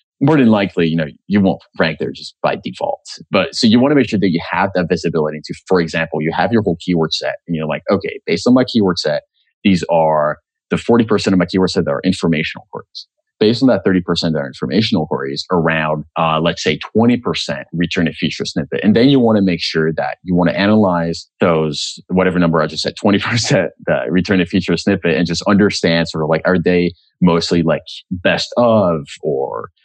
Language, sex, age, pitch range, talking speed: English, male, 30-49, 80-100 Hz, 215 wpm